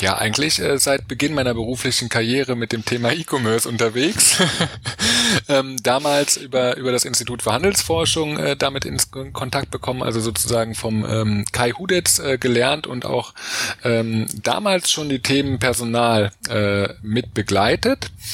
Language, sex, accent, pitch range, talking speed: German, male, German, 110-135 Hz, 145 wpm